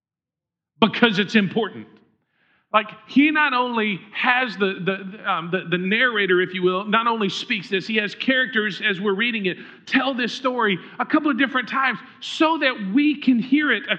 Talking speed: 185 wpm